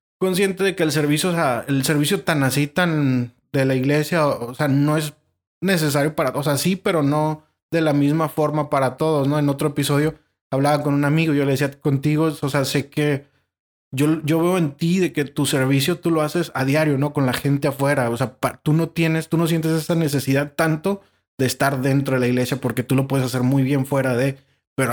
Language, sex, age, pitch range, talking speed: English, male, 20-39, 130-150 Hz, 230 wpm